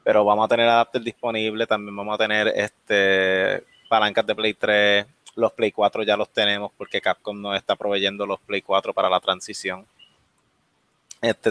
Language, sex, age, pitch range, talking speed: English, male, 20-39, 105-140 Hz, 165 wpm